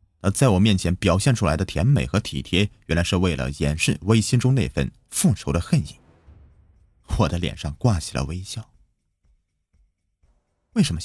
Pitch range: 80-110 Hz